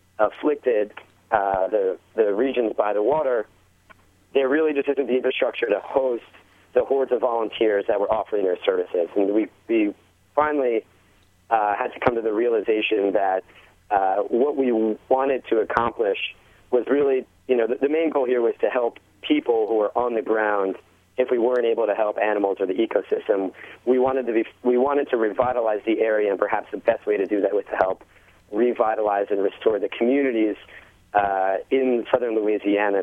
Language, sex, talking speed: English, male, 185 wpm